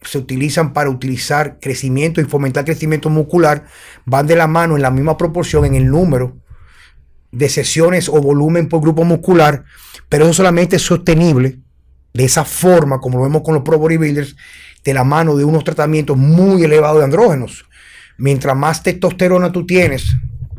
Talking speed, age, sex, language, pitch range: 165 wpm, 30-49, male, Spanish, 135-175 Hz